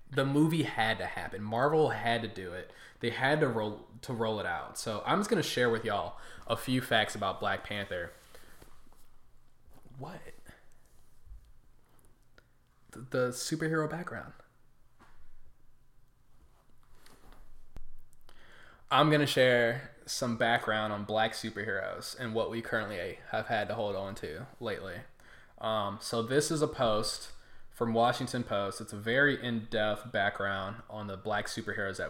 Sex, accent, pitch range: male, American, 110-130 Hz